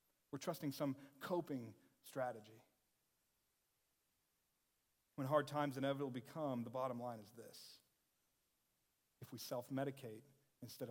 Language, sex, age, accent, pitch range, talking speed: English, male, 40-59, American, 125-150 Hz, 105 wpm